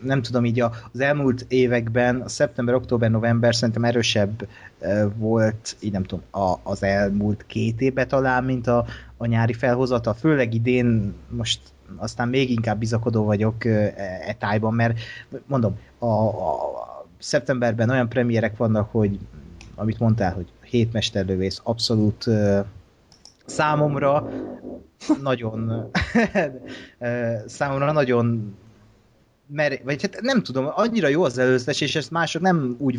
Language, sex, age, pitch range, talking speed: Hungarian, male, 30-49, 110-135 Hz, 125 wpm